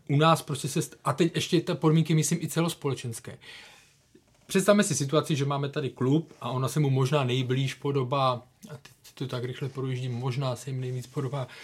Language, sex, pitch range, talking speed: Czech, male, 125-145 Hz, 200 wpm